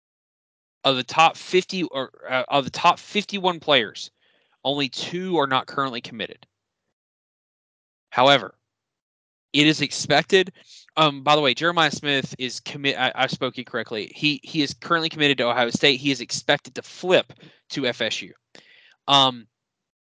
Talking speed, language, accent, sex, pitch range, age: 145 wpm, English, American, male, 125-150 Hz, 20-39